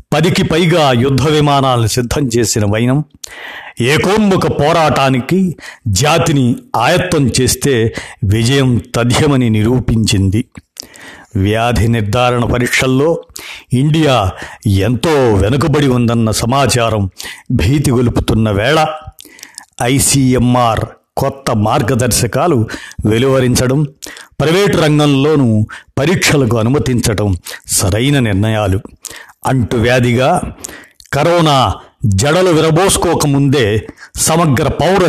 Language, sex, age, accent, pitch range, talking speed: Telugu, male, 50-69, native, 115-150 Hz, 70 wpm